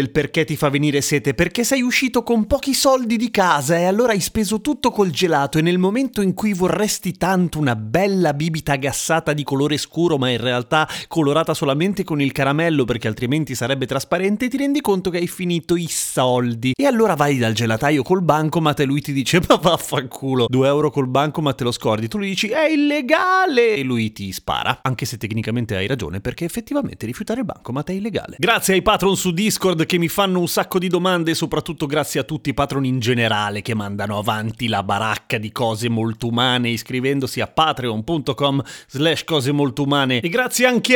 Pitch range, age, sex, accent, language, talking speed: 130-185 Hz, 30-49, male, native, Italian, 205 wpm